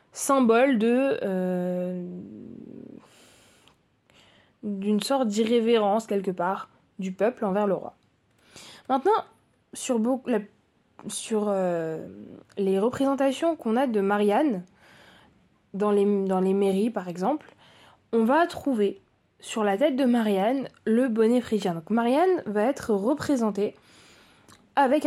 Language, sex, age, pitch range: French, female, 20-39, 200-270 Hz